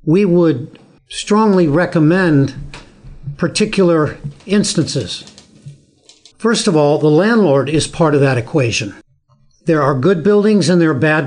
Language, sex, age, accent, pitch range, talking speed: English, male, 60-79, American, 150-180 Hz, 130 wpm